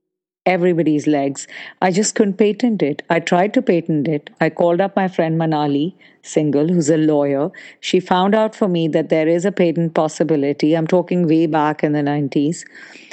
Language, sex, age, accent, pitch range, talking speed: English, female, 50-69, Indian, 150-190 Hz, 185 wpm